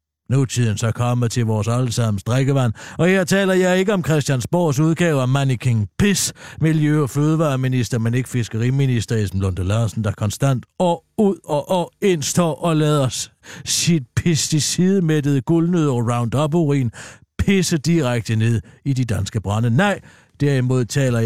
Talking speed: 150 wpm